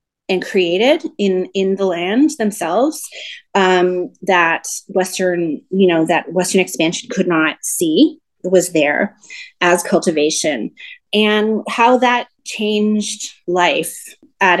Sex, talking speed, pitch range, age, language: female, 115 wpm, 165-200 Hz, 30-49, English